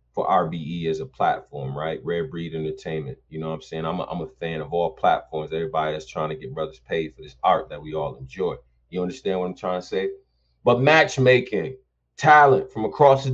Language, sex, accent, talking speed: English, male, American, 215 wpm